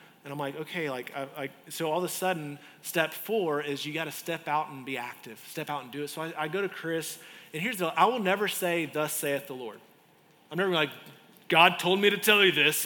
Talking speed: 245 wpm